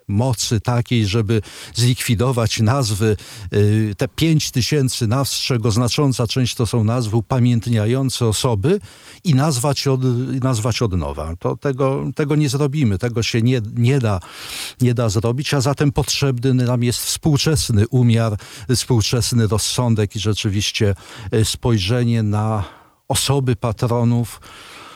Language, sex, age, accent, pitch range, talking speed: Polish, male, 50-69, native, 110-140 Hz, 125 wpm